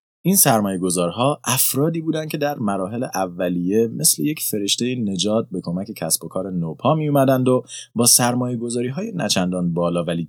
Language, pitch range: Persian, 100-150 Hz